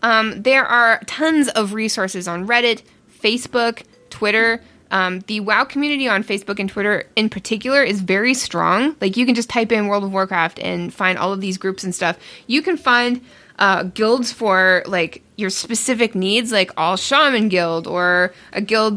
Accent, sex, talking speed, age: American, female, 175 wpm, 20-39